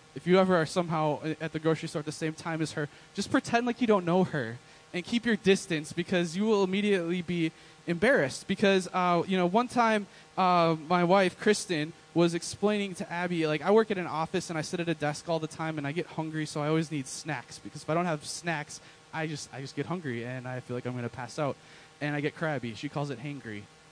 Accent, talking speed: American, 250 wpm